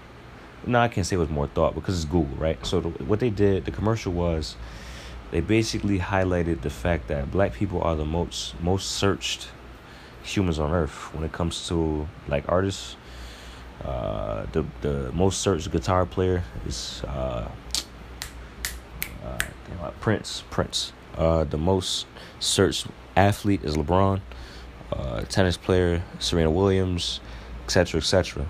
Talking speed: 140 wpm